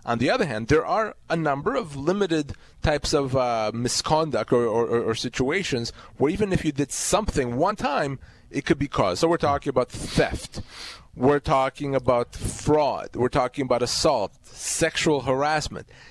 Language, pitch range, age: English, 120-155 Hz, 30-49